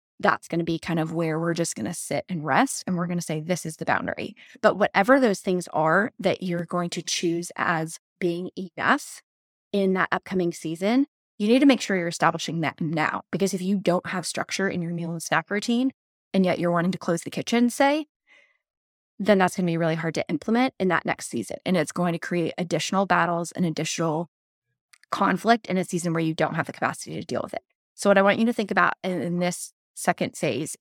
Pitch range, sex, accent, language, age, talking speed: 165-200 Hz, female, American, English, 20-39, 230 wpm